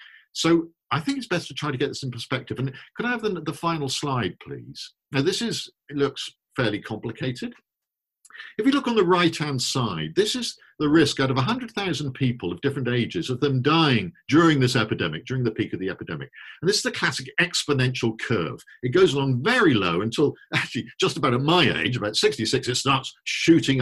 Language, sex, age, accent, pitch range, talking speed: English, male, 50-69, British, 120-175 Hz, 210 wpm